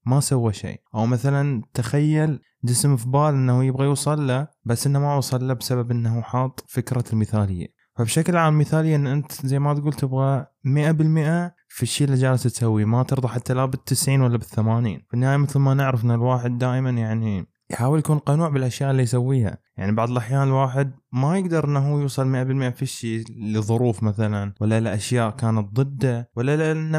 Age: 20-39